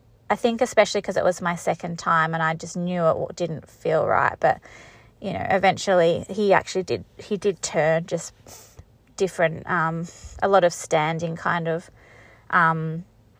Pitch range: 165-190 Hz